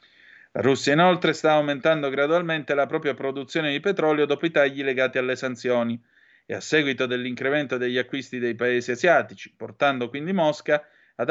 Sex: male